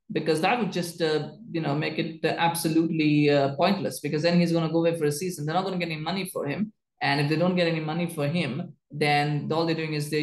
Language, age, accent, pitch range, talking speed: English, 20-39, Indian, 145-175 Hz, 275 wpm